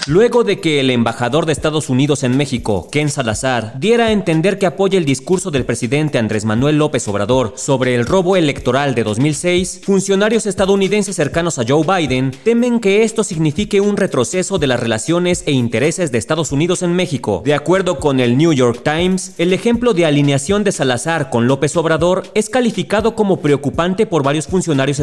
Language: Spanish